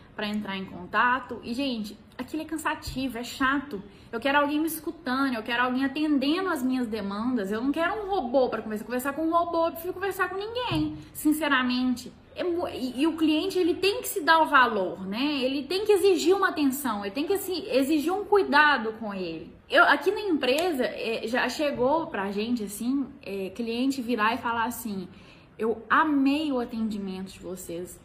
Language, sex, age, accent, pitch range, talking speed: Portuguese, female, 10-29, Brazilian, 225-315 Hz, 195 wpm